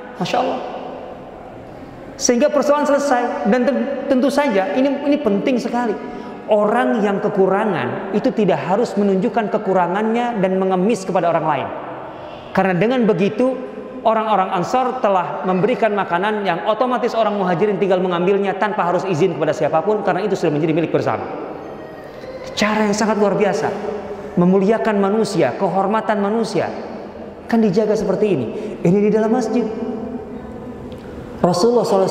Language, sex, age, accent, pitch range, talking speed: Indonesian, male, 30-49, native, 170-220 Hz, 125 wpm